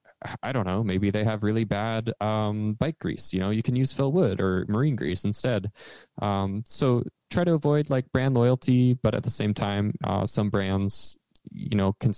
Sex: male